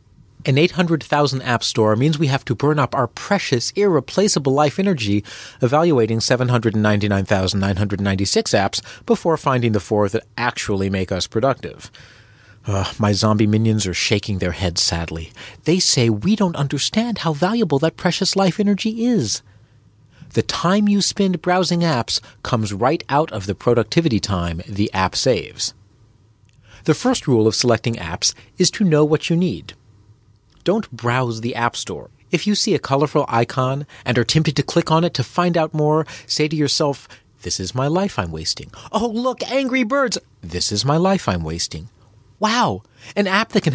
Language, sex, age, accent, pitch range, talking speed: English, male, 40-59, American, 105-165 Hz, 165 wpm